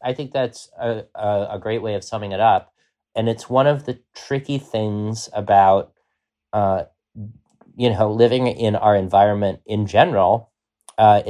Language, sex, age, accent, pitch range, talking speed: English, male, 30-49, American, 95-120 Hz, 160 wpm